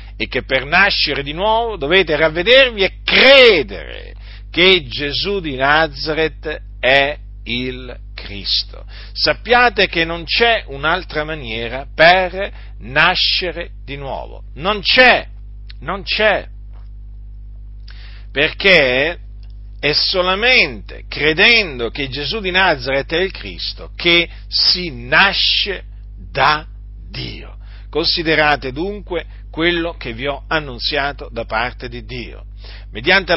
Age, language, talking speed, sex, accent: 50-69, Italian, 105 wpm, male, native